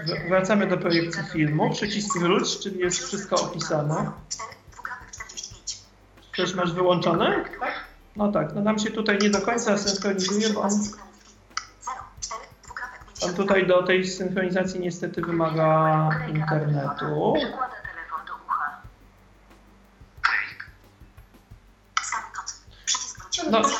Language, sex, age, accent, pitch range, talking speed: Polish, male, 40-59, native, 160-210 Hz, 90 wpm